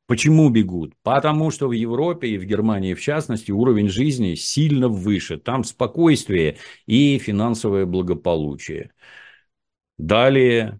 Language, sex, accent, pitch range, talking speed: Russian, male, native, 95-130 Hz, 115 wpm